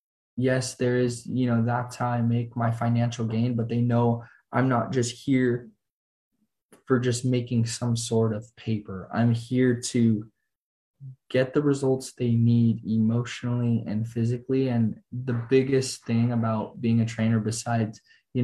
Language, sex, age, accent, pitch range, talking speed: English, male, 20-39, American, 115-130 Hz, 150 wpm